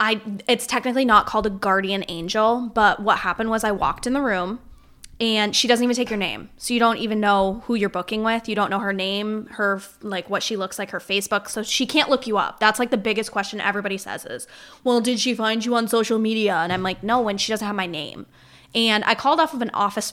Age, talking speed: 20-39, 255 wpm